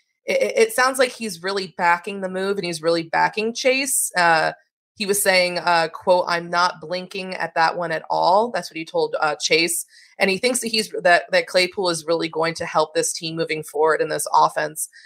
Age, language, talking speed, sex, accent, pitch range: 20-39, English, 210 wpm, female, American, 165-205 Hz